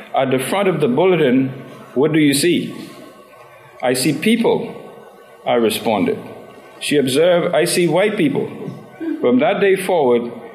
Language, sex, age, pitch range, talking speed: English, male, 50-69, 135-195 Hz, 140 wpm